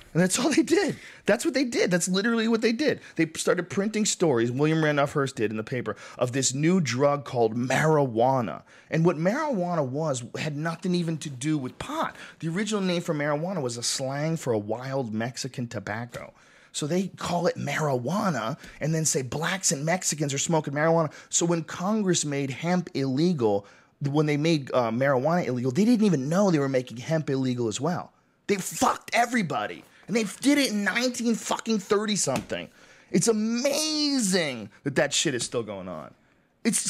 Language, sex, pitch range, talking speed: English, male, 130-195 Hz, 185 wpm